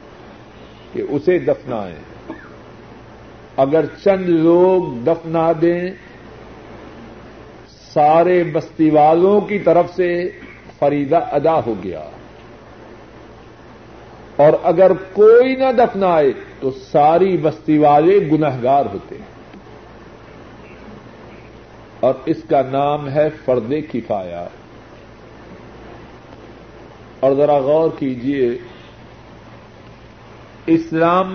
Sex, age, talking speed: male, 50-69, 80 wpm